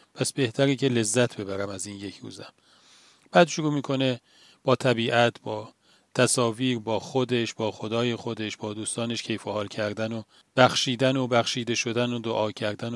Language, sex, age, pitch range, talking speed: Persian, male, 40-59, 110-135 Hz, 160 wpm